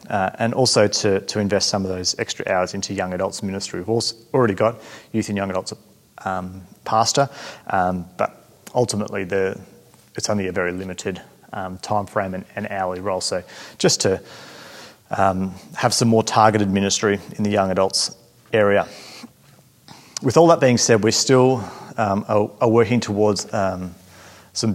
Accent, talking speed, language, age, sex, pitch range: Australian, 165 wpm, English, 30-49, male, 100-115 Hz